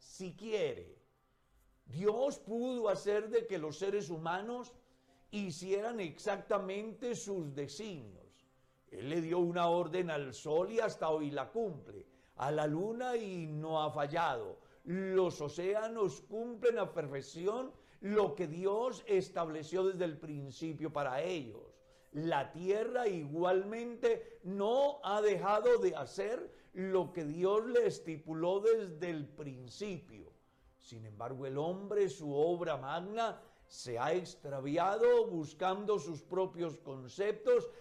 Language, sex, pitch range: Spanish, male, 155-210 Hz